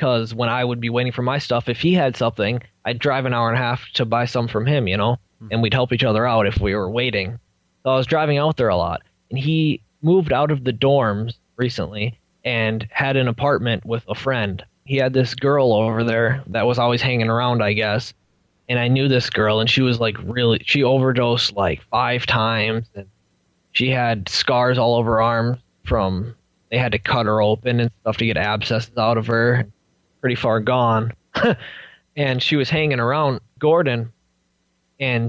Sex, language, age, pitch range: male, English, 20-39, 110-135 Hz